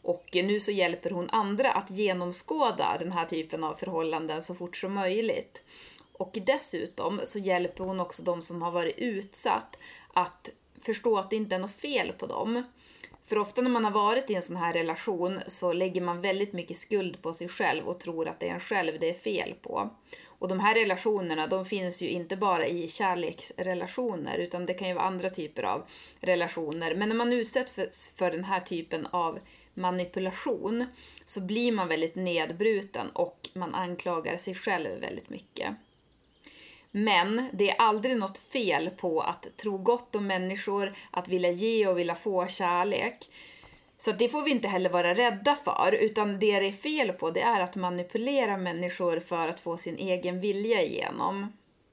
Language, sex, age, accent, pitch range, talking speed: Swedish, female, 30-49, native, 175-220 Hz, 180 wpm